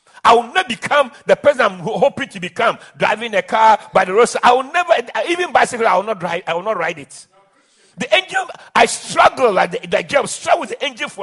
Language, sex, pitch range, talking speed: English, male, 215-305 Hz, 230 wpm